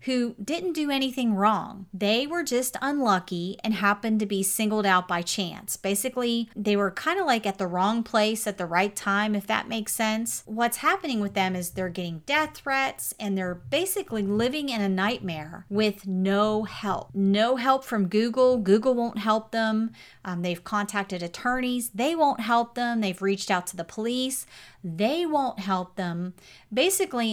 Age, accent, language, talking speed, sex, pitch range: 30-49, American, English, 175 wpm, female, 190-245 Hz